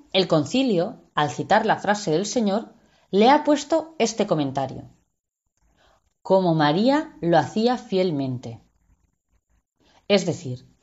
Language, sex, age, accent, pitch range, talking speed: Spanish, female, 20-39, Spanish, 145-220 Hz, 110 wpm